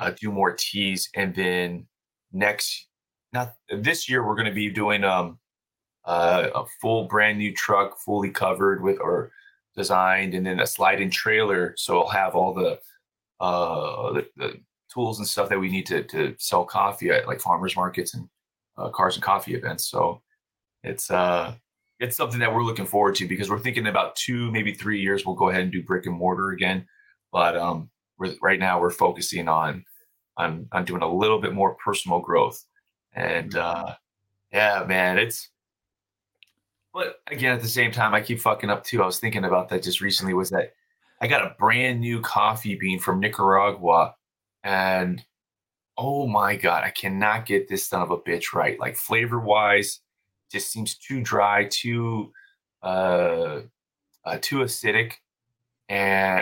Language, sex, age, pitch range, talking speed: English, male, 20-39, 95-120 Hz, 175 wpm